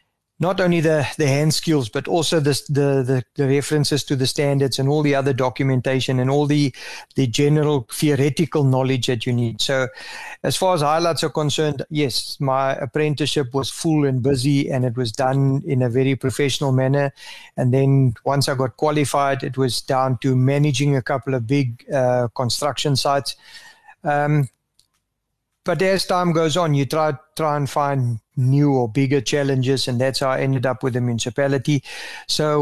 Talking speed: 180 wpm